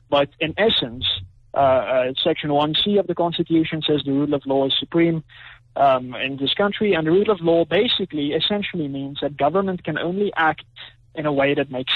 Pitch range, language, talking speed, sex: 140-190 Hz, English, 195 wpm, male